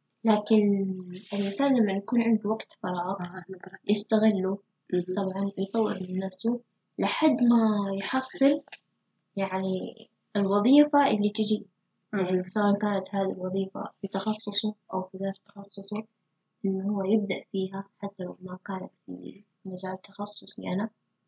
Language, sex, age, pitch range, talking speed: Arabic, female, 20-39, 190-230 Hz, 120 wpm